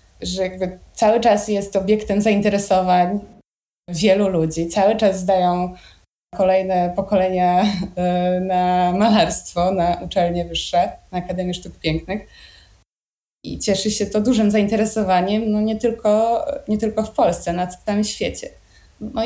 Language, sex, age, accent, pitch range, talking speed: Polish, female, 20-39, native, 180-210 Hz, 125 wpm